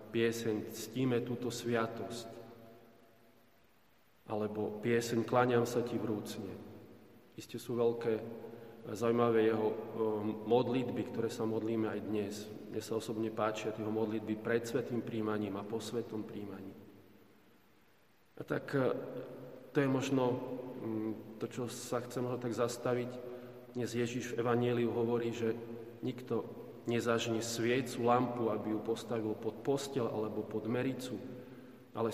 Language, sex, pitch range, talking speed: Slovak, male, 110-120 Hz, 125 wpm